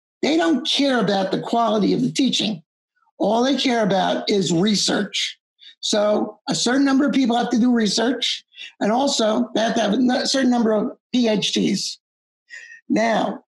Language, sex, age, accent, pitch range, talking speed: English, male, 60-79, American, 220-290 Hz, 165 wpm